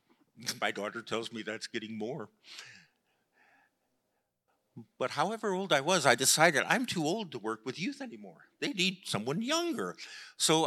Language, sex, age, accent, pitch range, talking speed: English, male, 50-69, American, 115-150 Hz, 150 wpm